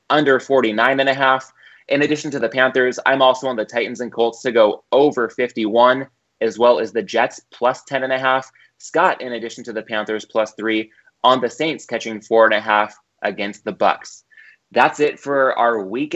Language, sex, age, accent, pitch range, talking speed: English, male, 20-39, American, 125-150 Hz, 205 wpm